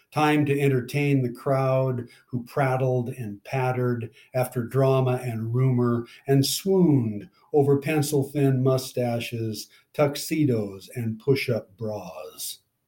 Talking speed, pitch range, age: 100 wpm, 120-140 Hz, 60-79